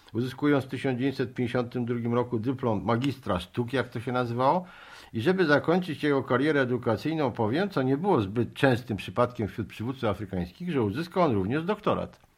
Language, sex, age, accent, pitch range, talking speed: Polish, male, 50-69, native, 110-150 Hz, 155 wpm